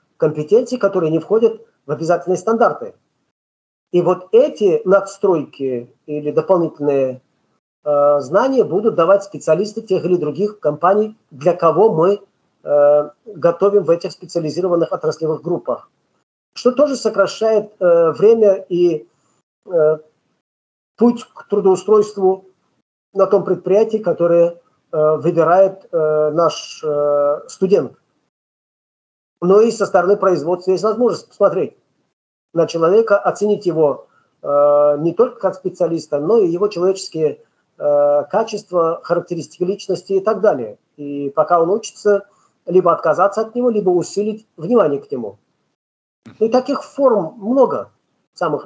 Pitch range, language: 155-205 Hz, Russian